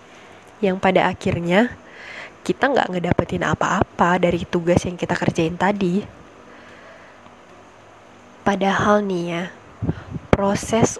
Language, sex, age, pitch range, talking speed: Indonesian, female, 20-39, 185-220 Hz, 95 wpm